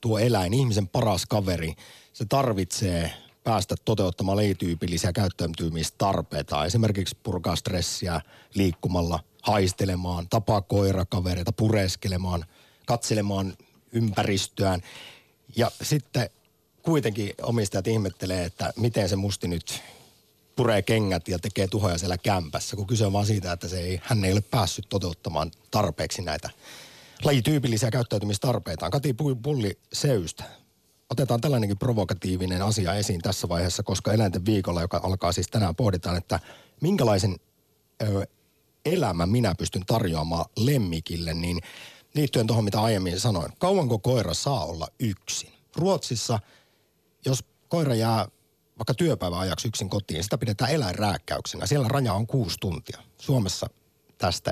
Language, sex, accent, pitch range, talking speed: Finnish, male, native, 90-115 Hz, 120 wpm